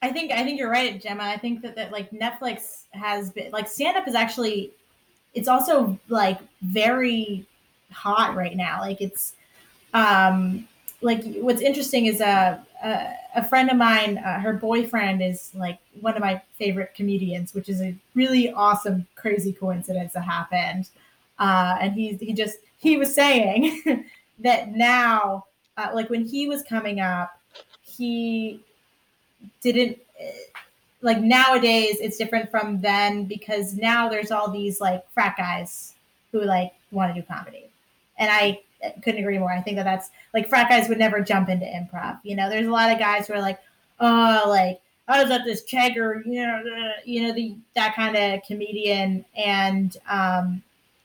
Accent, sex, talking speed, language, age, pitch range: American, female, 165 wpm, English, 20-39, 195-235 Hz